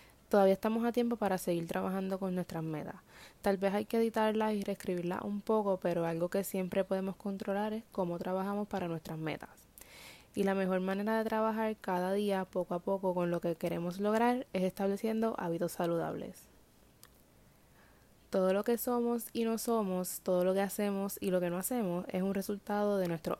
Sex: female